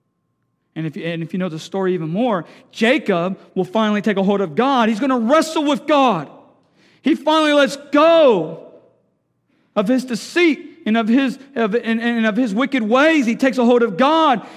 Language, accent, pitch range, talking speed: English, American, 235-300 Hz, 175 wpm